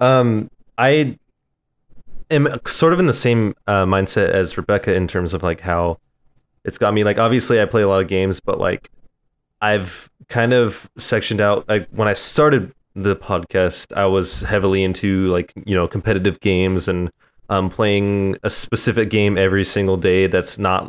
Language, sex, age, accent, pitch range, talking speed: English, male, 20-39, American, 90-110 Hz, 175 wpm